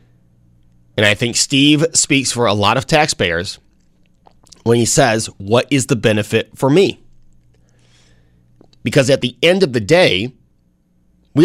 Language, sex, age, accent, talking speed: English, male, 30-49, American, 140 wpm